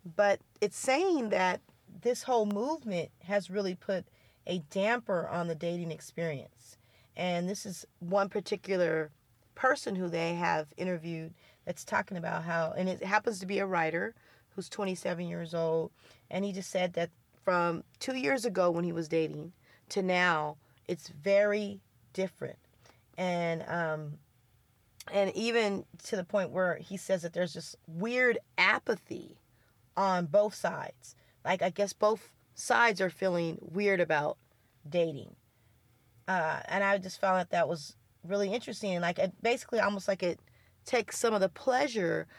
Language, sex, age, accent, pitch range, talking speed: English, female, 30-49, American, 160-200 Hz, 155 wpm